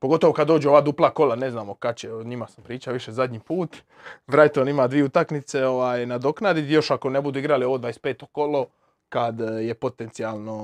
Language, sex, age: Croatian, male, 20-39